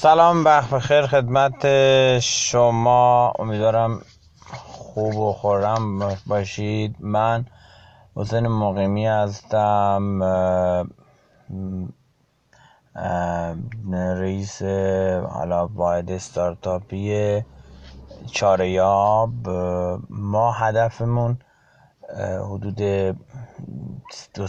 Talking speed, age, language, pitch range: 55 wpm, 30-49, Persian, 90-110 Hz